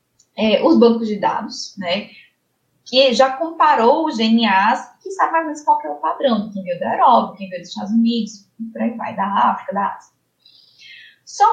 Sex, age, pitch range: female, 10-29, 215-320 Hz